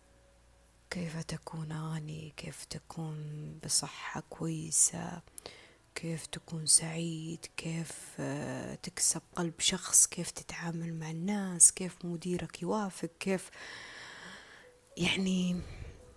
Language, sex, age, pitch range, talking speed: Arabic, female, 20-39, 160-195 Hz, 85 wpm